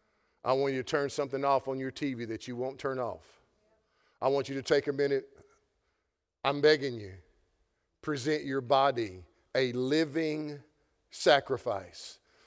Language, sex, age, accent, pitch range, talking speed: English, male, 50-69, American, 125-145 Hz, 150 wpm